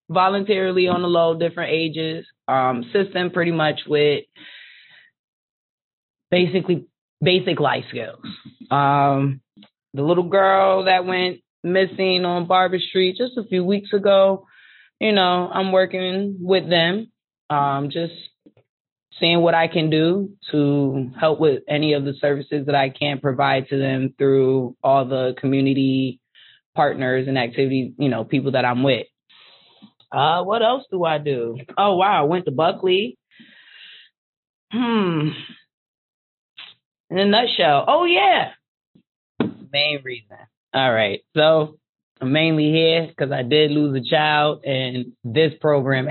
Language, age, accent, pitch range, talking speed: English, 20-39, American, 135-185 Hz, 135 wpm